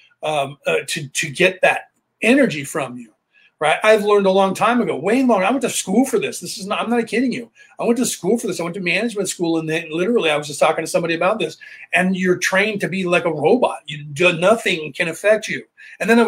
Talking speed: 260 wpm